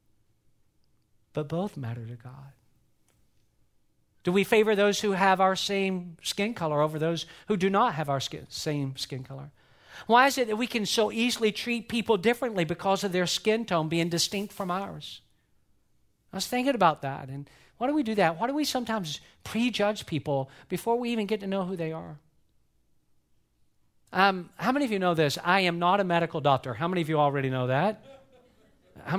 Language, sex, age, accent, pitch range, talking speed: English, male, 50-69, American, 140-200 Hz, 190 wpm